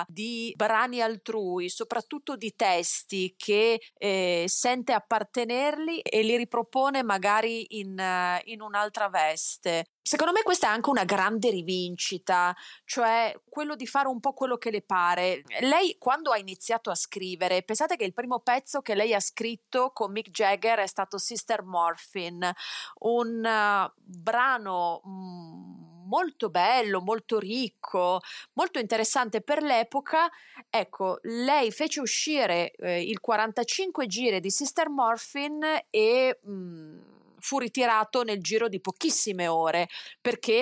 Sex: female